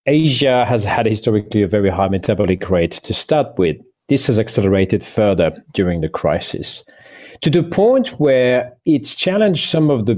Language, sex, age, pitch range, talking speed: English, male, 40-59, 105-140 Hz, 165 wpm